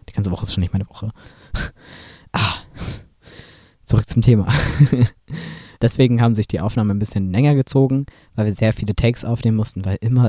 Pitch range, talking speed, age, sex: 105-125 Hz, 175 wpm, 20-39, male